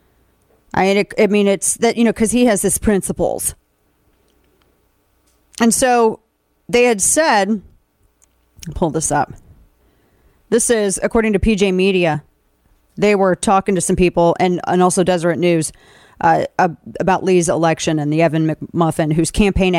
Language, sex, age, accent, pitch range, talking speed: English, female, 30-49, American, 165-220 Hz, 140 wpm